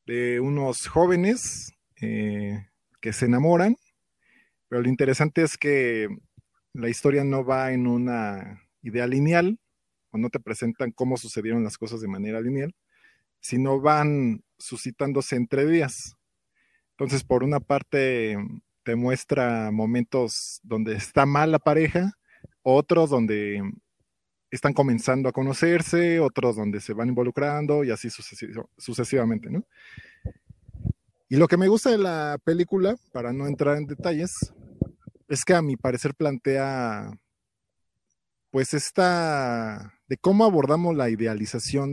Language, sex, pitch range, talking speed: Spanish, male, 115-150 Hz, 125 wpm